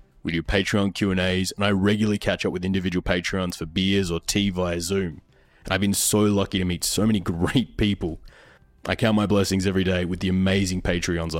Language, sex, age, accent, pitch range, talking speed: English, male, 20-39, Australian, 90-100 Hz, 200 wpm